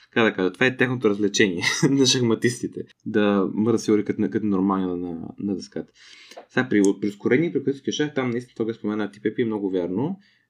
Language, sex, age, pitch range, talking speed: Bulgarian, male, 20-39, 100-135 Hz, 165 wpm